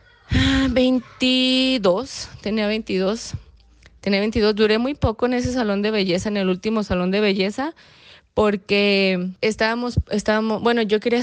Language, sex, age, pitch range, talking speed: Spanish, female, 20-39, 180-220 Hz, 135 wpm